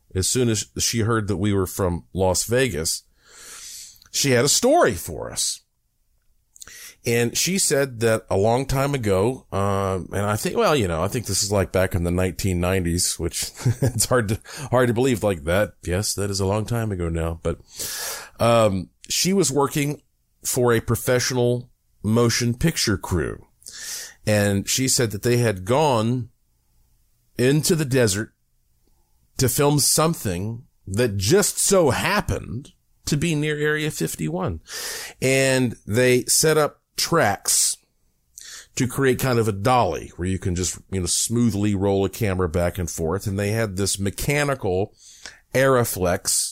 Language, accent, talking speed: English, American, 155 wpm